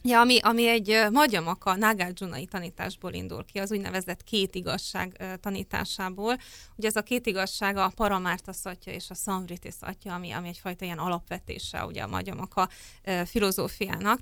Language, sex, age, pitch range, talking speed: Hungarian, female, 30-49, 180-210 Hz, 140 wpm